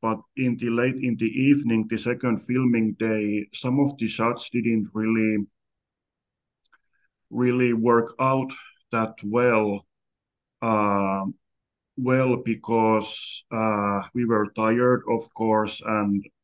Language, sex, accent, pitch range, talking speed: English, male, Finnish, 105-120 Hz, 115 wpm